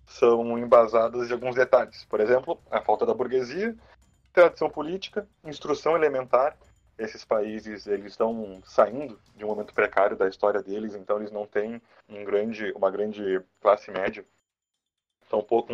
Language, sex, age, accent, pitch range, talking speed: Portuguese, male, 20-39, Brazilian, 105-130 Hz, 140 wpm